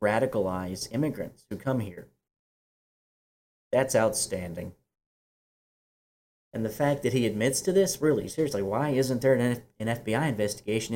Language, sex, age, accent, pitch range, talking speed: English, male, 30-49, American, 105-135 Hz, 130 wpm